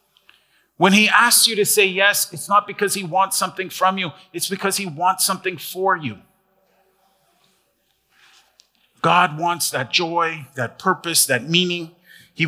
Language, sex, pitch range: English, male, 155-195 Hz